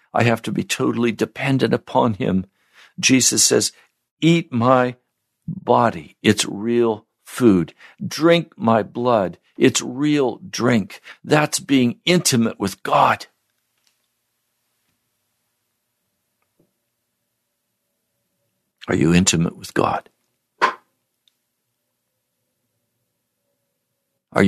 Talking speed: 80 wpm